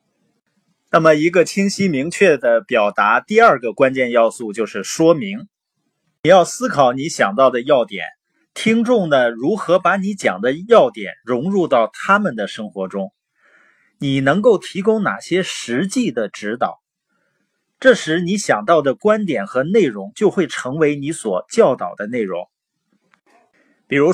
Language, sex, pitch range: Chinese, male, 145-215 Hz